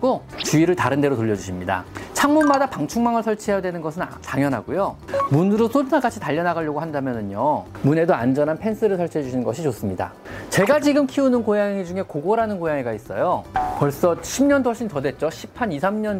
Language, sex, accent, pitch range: Korean, male, native, 135-220 Hz